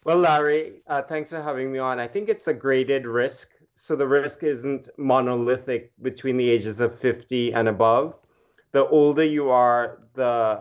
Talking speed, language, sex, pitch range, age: 175 wpm, English, male, 120-140 Hz, 30-49